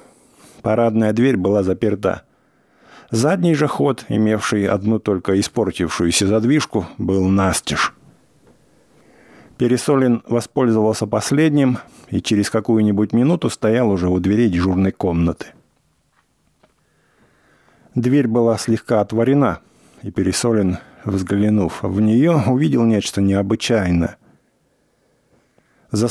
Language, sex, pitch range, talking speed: English, male, 95-115 Hz, 90 wpm